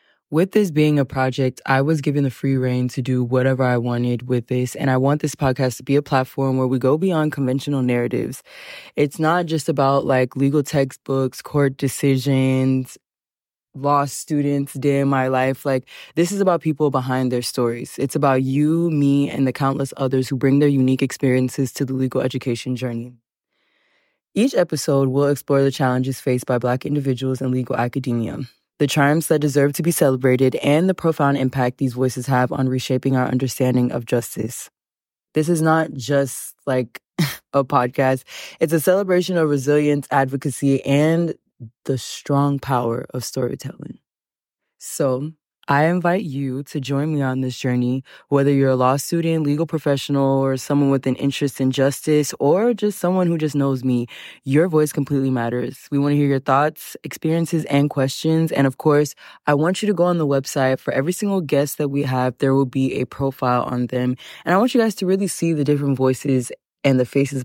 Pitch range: 130-150 Hz